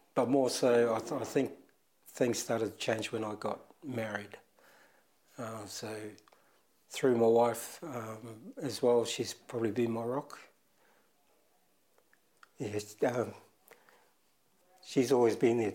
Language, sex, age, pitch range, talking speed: English, male, 60-79, 110-120 Hz, 130 wpm